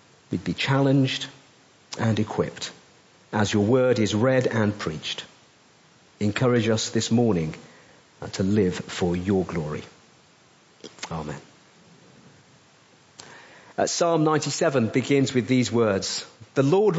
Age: 50-69